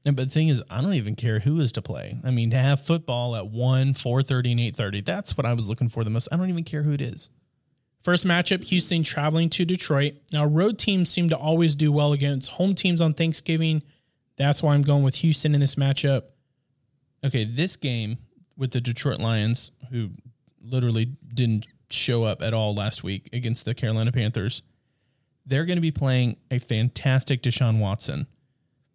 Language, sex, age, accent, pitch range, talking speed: English, male, 30-49, American, 120-145 Hz, 195 wpm